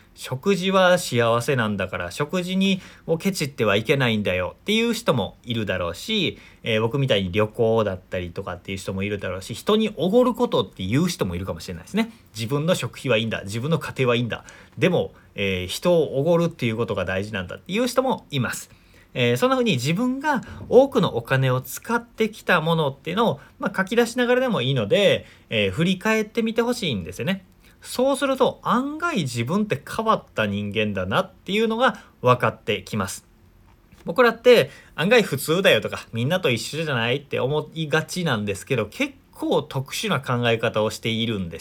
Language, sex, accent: Japanese, male, native